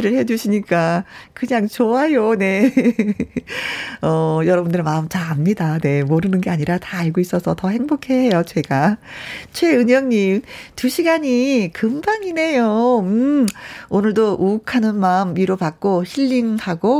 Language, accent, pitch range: Korean, native, 170-240 Hz